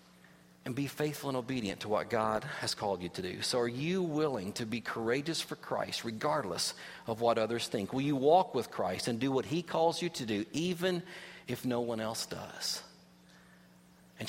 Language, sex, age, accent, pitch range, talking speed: English, male, 40-59, American, 95-130 Hz, 195 wpm